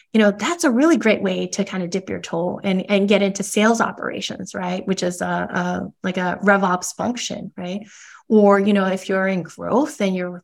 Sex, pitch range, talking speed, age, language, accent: female, 185-220 Hz, 225 wpm, 20-39, English, American